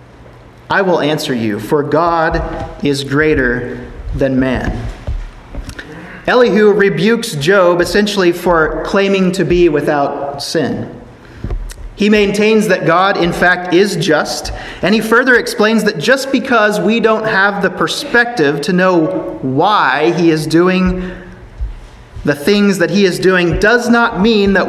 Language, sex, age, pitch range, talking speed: English, male, 30-49, 150-195 Hz, 135 wpm